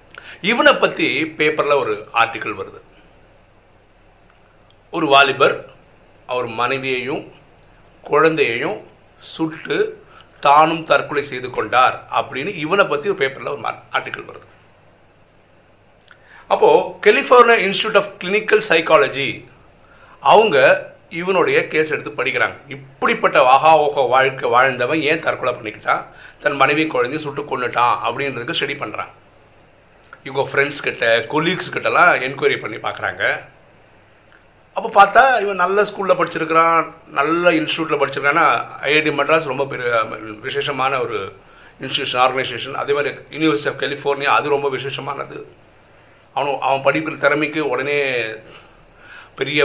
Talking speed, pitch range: 110 wpm, 135-185 Hz